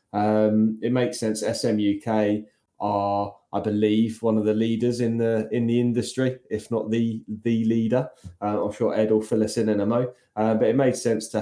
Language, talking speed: English, 205 wpm